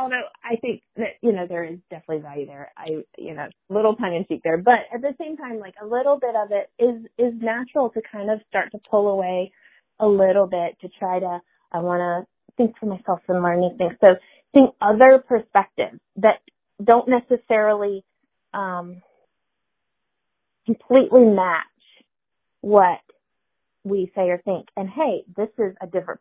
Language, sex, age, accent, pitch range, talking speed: English, female, 30-49, American, 190-250 Hz, 175 wpm